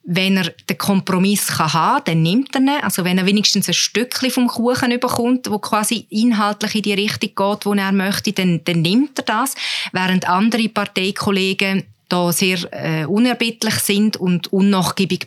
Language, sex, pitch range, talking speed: German, female, 175-215 Hz, 175 wpm